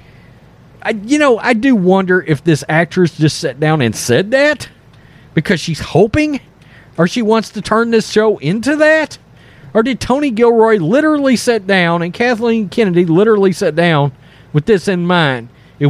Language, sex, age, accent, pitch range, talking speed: English, male, 40-59, American, 145-225 Hz, 165 wpm